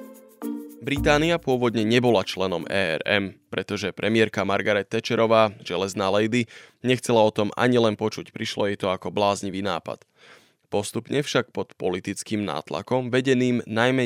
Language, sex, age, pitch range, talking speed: Slovak, male, 20-39, 105-125 Hz, 130 wpm